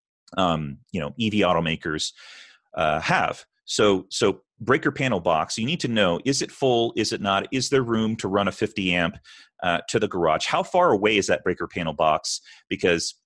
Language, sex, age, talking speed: English, male, 30-49, 200 wpm